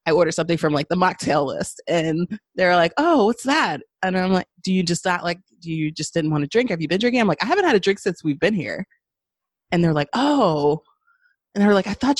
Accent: American